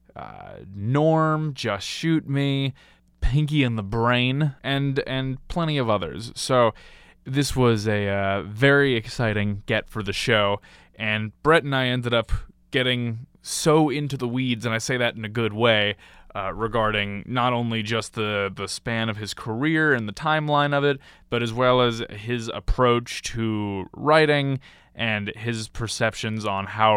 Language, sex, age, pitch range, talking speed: English, male, 20-39, 105-130 Hz, 160 wpm